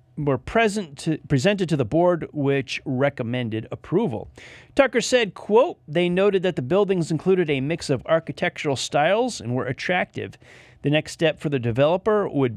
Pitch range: 135-190 Hz